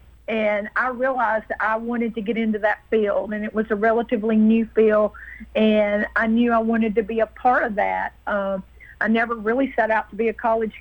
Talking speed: 210 wpm